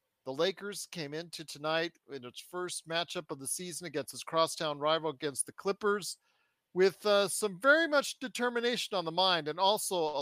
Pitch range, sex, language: 150-200 Hz, male, English